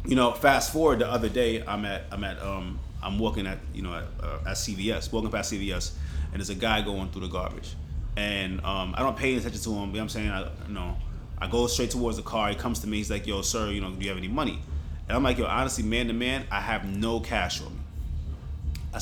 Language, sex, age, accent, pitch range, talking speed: English, male, 30-49, American, 75-115 Hz, 265 wpm